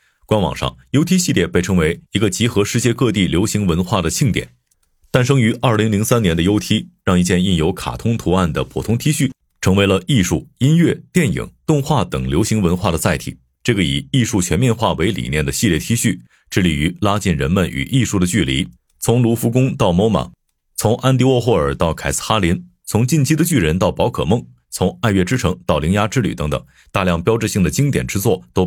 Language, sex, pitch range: Chinese, male, 85-120 Hz